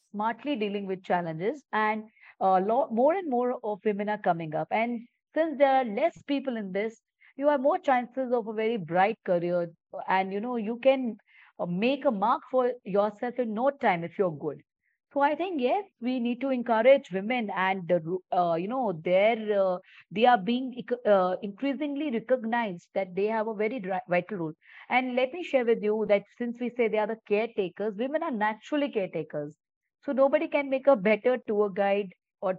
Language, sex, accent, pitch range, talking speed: English, female, Indian, 195-250 Hz, 190 wpm